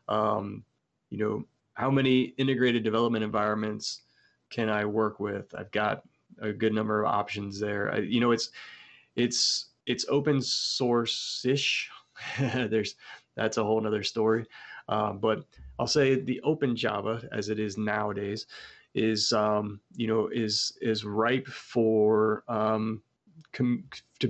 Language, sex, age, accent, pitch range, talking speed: English, male, 20-39, American, 105-125 Hz, 135 wpm